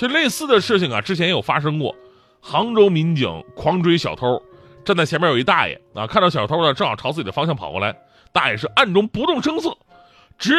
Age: 30-49